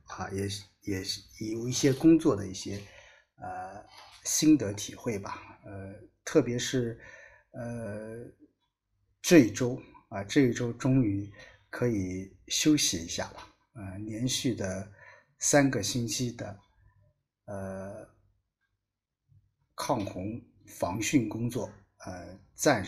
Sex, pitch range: male, 100-130 Hz